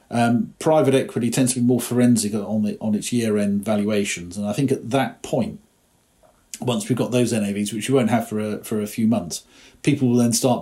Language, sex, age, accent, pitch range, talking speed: English, male, 40-59, British, 105-130 Hz, 220 wpm